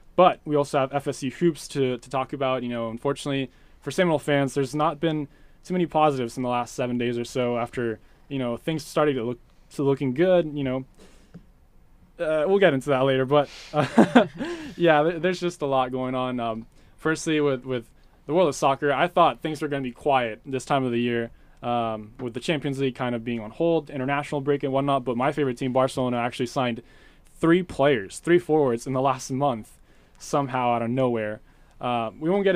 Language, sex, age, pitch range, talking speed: English, male, 20-39, 120-150 Hz, 210 wpm